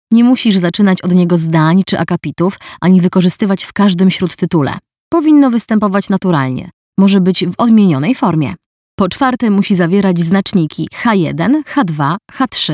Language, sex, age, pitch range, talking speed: Polish, female, 20-39, 170-210 Hz, 135 wpm